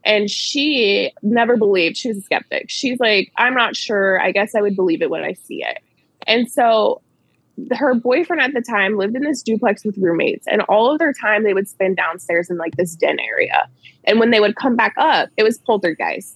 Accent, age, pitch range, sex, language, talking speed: American, 20-39, 190-255 Hz, female, English, 220 wpm